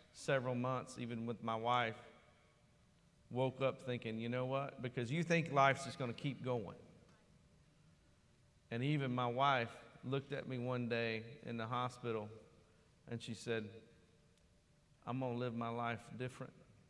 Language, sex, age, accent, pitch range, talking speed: English, male, 40-59, American, 115-140 Hz, 155 wpm